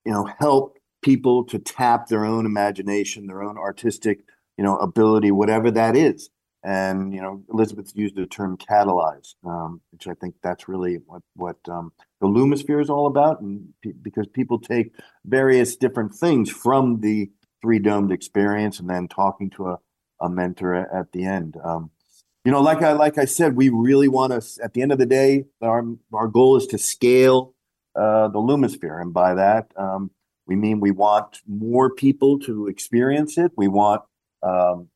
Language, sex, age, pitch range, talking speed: English, male, 50-69, 100-130 Hz, 180 wpm